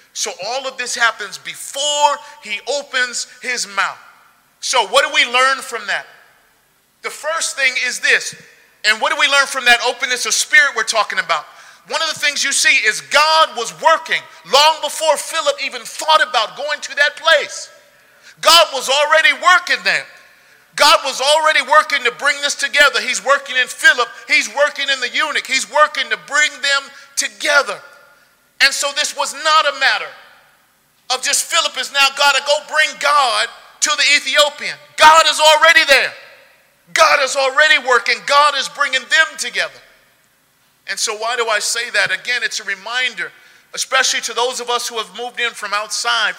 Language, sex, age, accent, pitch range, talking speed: English, male, 40-59, American, 245-295 Hz, 180 wpm